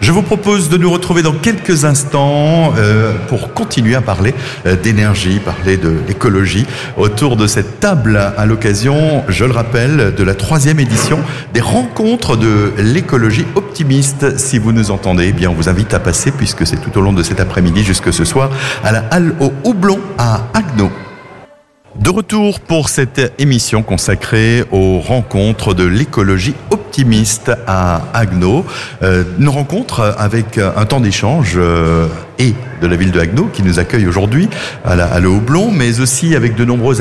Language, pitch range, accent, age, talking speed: French, 95-130 Hz, French, 60-79, 165 wpm